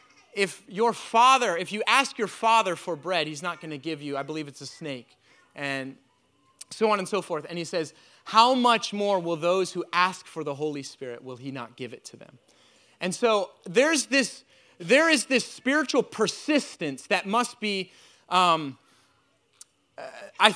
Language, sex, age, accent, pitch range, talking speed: English, male, 30-49, American, 170-240 Hz, 180 wpm